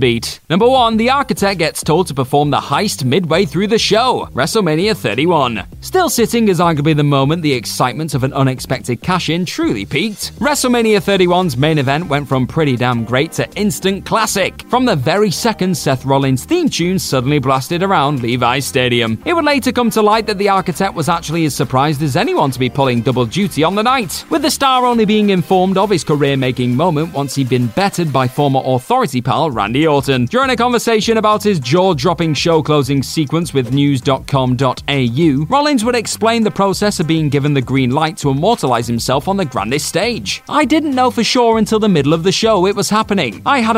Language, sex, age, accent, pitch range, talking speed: English, male, 30-49, British, 140-215 Hz, 195 wpm